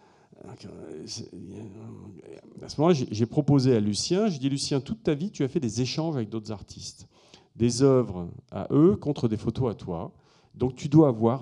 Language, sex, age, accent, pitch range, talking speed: French, male, 40-59, French, 95-135 Hz, 180 wpm